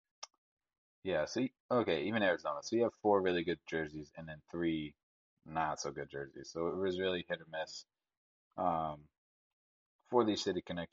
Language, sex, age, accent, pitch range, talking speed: English, male, 30-49, American, 75-85 Hz, 160 wpm